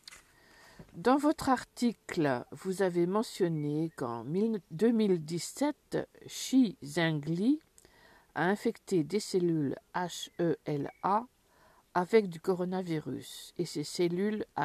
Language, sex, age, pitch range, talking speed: French, female, 50-69, 165-225 Hz, 85 wpm